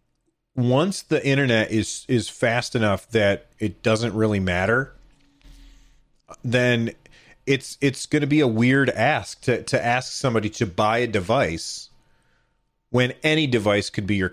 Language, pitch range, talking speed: English, 105-130 Hz, 145 wpm